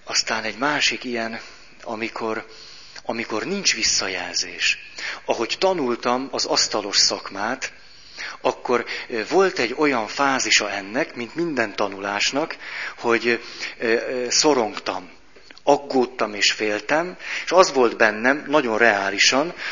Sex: male